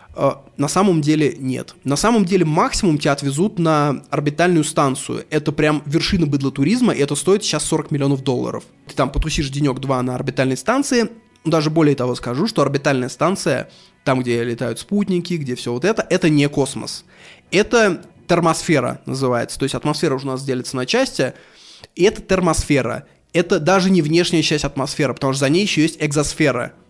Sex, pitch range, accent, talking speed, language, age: male, 135-175 Hz, native, 175 wpm, Russian, 20-39